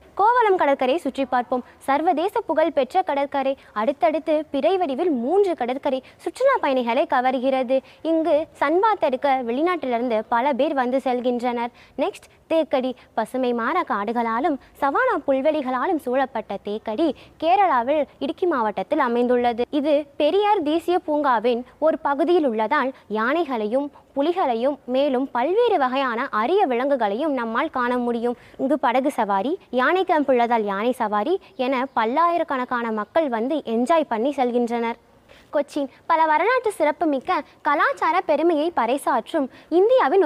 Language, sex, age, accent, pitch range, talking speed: Tamil, female, 20-39, native, 250-325 Hz, 110 wpm